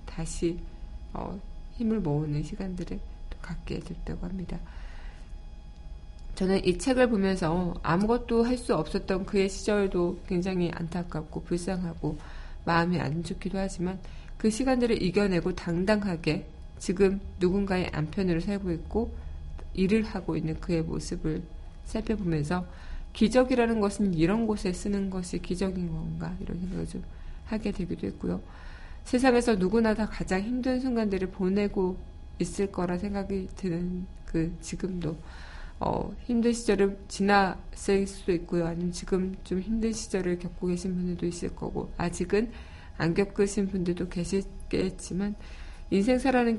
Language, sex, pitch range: Korean, female, 165-200 Hz